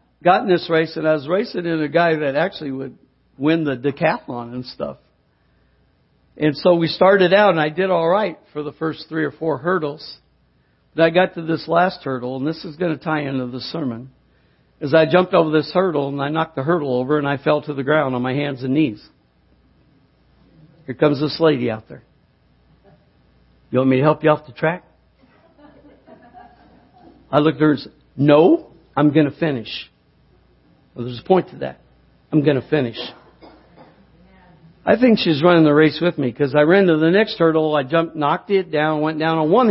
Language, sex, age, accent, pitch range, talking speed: English, male, 60-79, American, 135-165 Hz, 205 wpm